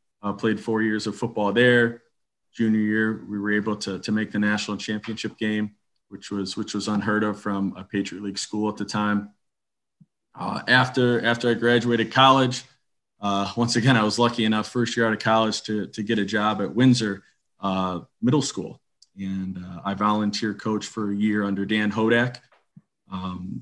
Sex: male